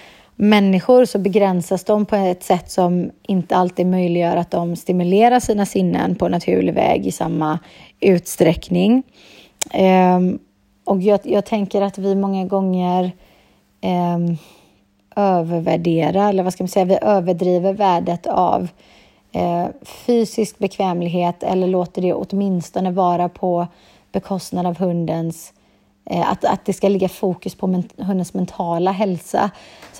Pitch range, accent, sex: 175-200 Hz, native, female